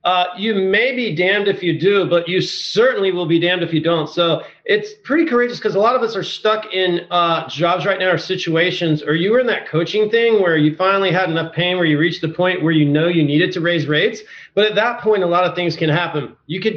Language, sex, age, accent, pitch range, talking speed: English, male, 40-59, American, 170-210 Hz, 260 wpm